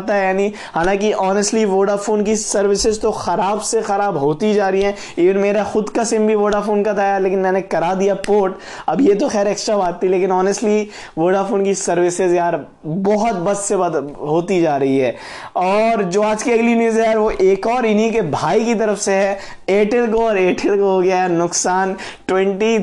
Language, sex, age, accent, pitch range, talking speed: Hindi, male, 20-39, native, 180-215 Hz, 95 wpm